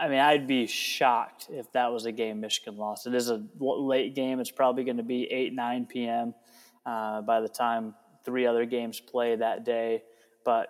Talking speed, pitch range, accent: 195 wpm, 115-140 Hz, American